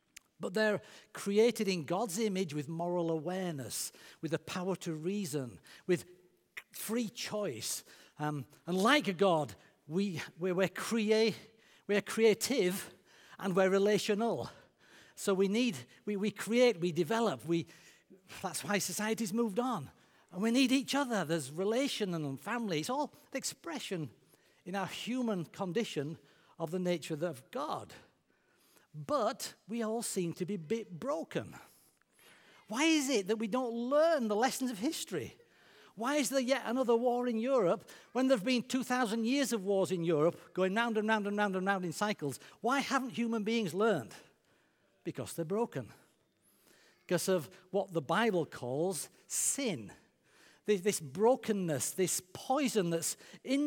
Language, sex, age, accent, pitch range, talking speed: English, male, 60-79, British, 175-235 Hz, 150 wpm